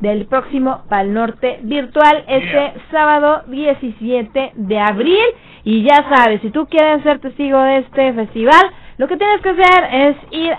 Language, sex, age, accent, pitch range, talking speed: Spanish, female, 20-39, Mexican, 220-295 Hz, 160 wpm